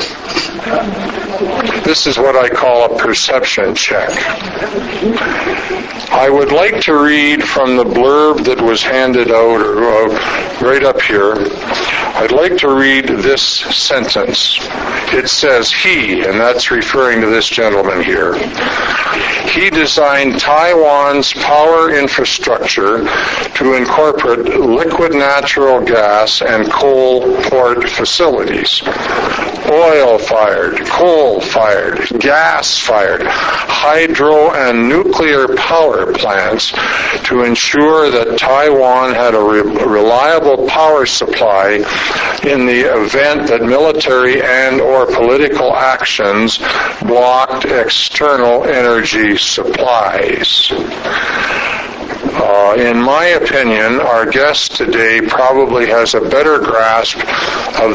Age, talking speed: 60-79, 100 wpm